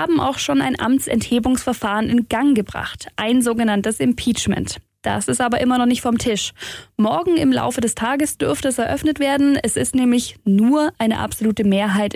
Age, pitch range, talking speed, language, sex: 10-29, 215-260 Hz, 175 wpm, German, female